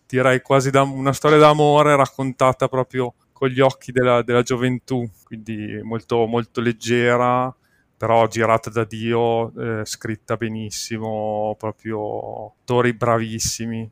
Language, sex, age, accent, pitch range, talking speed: Italian, male, 30-49, native, 115-130 Hz, 115 wpm